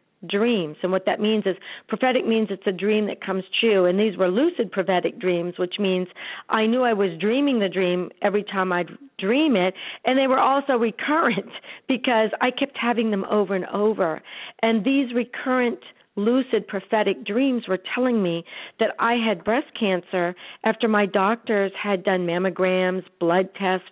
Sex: female